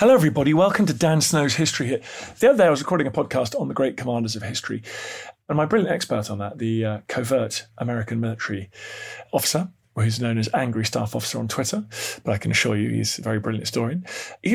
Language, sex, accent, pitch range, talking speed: English, male, British, 115-180 Hz, 220 wpm